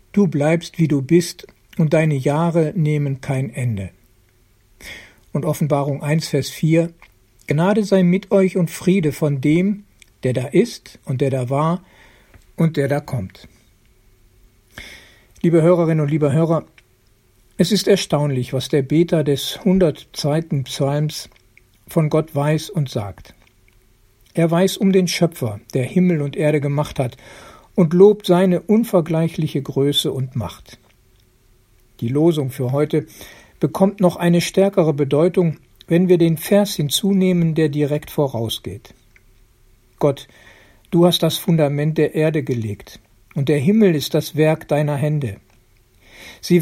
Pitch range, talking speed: 120-175 Hz, 135 wpm